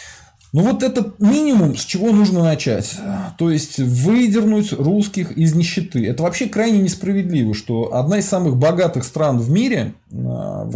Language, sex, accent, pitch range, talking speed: Russian, male, native, 135-195 Hz, 150 wpm